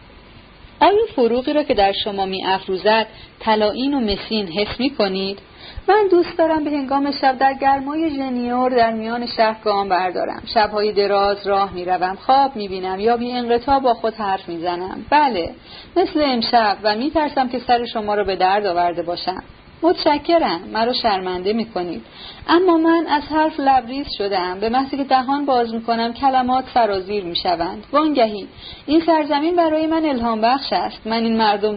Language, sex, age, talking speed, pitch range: Persian, female, 30-49, 165 wpm, 195-255 Hz